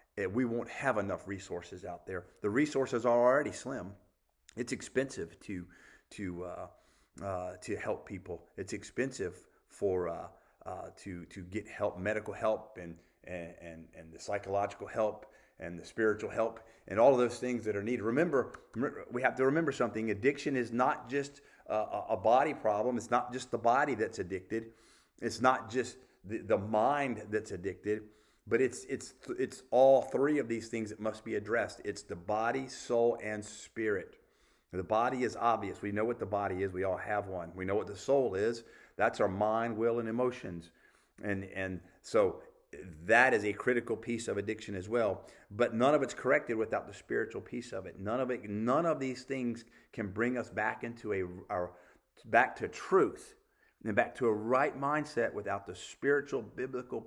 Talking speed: 185 wpm